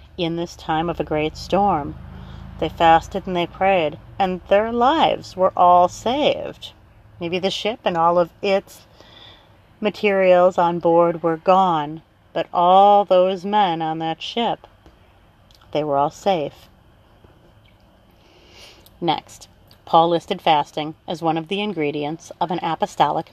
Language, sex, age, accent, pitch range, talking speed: English, female, 30-49, American, 155-195 Hz, 135 wpm